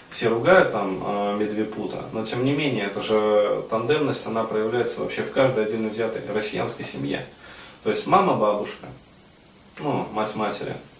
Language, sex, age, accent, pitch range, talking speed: Russian, male, 20-39, native, 105-130 Hz, 135 wpm